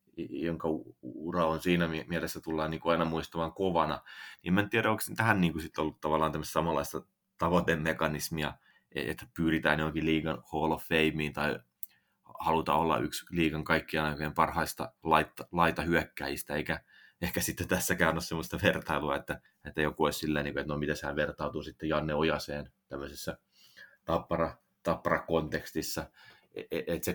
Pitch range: 80-85 Hz